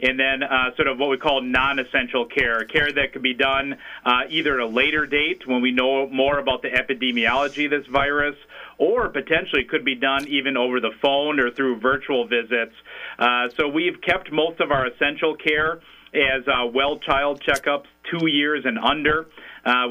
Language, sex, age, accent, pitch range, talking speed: English, male, 40-59, American, 130-145 Hz, 185 wpm